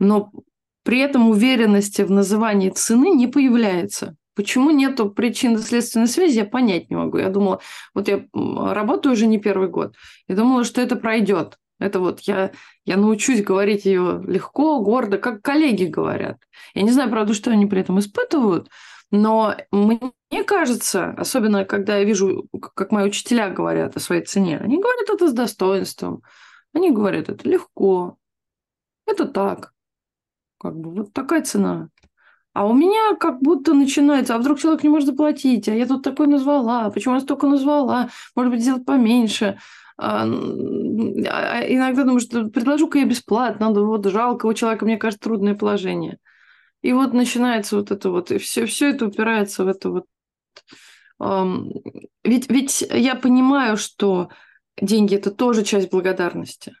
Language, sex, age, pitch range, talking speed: Russian, female, 20-39, 200-270 Hz, 155 wpm